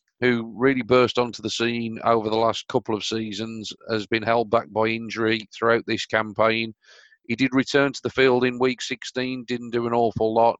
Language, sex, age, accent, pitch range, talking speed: English, male, 40-59, British, 105-115 Hz, 200 wpm